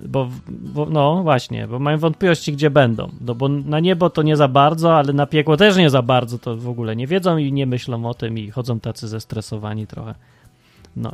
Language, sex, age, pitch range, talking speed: Polish, male, 30-49, 130-185 Hz, 215 wpm